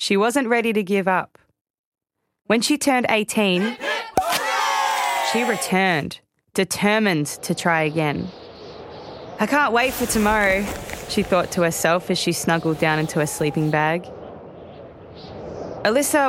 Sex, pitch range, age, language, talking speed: female, 115-165 Hz, 20-39, English, 125 wpm